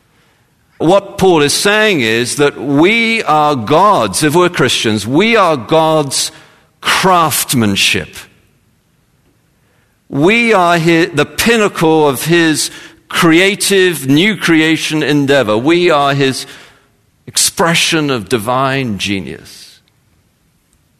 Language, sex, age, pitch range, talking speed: English, male, 50-69, 100-150 Hz, 95 wpm